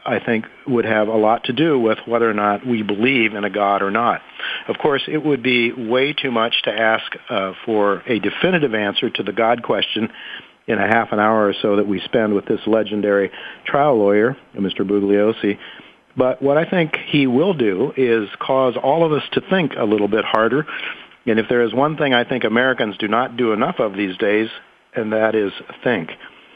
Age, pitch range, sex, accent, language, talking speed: 50-69, 105-130 Hz, male, American, English, 210 wpm